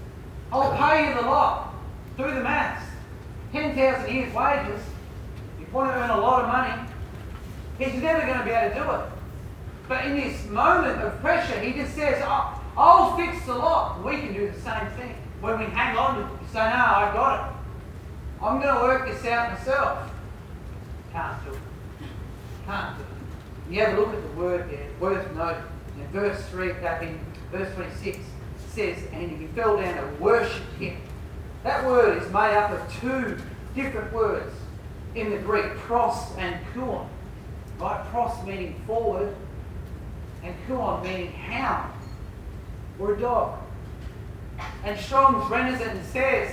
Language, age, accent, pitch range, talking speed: English, 40-59, Australian, 175-270 Hz, 165 wpm